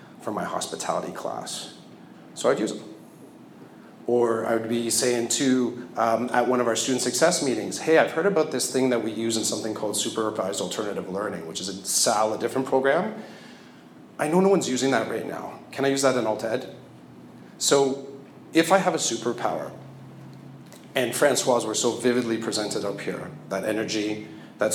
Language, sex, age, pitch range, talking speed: English, male, 40-59, 110-135 Hz, 180 wpm